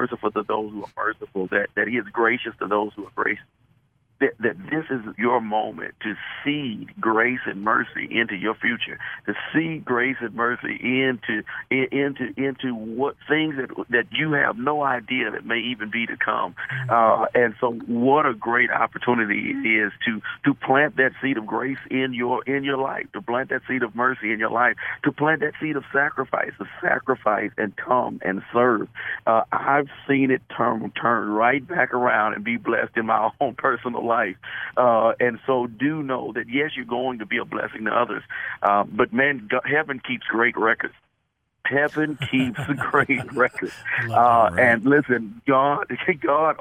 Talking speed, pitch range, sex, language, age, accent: 185 wpm, 115-140 Hz, male, English, 50-69, American